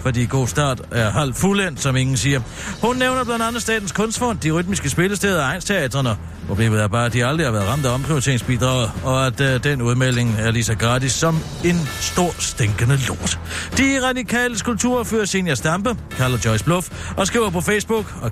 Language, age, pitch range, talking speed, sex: Danish, 60-79, 115-185 Hz, 190 wpm, male